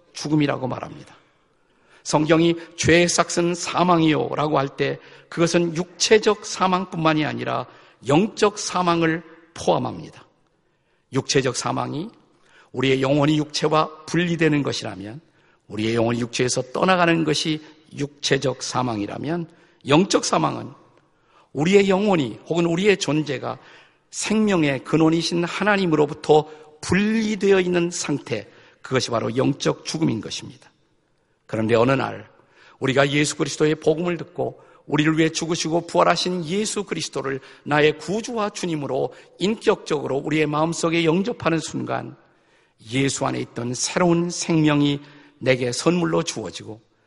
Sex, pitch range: male, 135-175 Hz